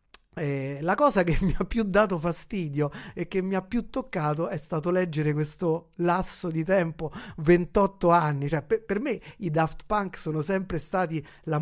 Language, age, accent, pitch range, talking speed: Italian, 30-49, native, 150-190 Hz, 180 wpm